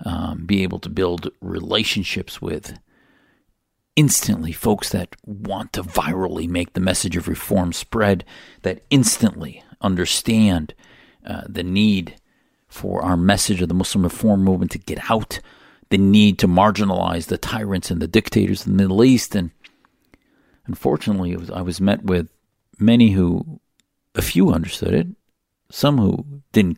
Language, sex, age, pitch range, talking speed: English, male, 50-69, 90-110 Hz, 145 wpm